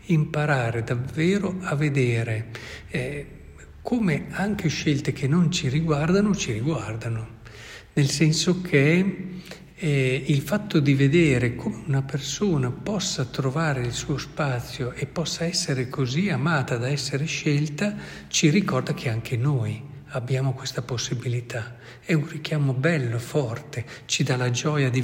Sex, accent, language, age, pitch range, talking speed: male, native, Italian, 60-79, 125-160 Hz, 135 wpm